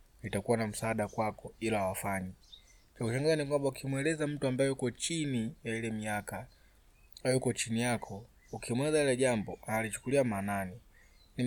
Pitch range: 105-120 Hz